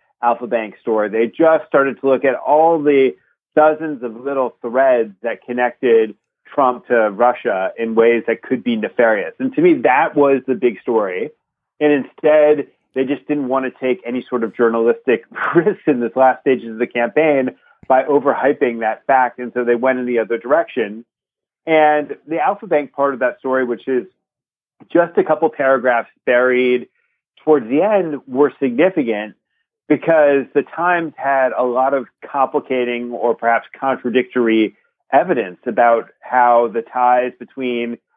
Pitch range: 120-145 Hz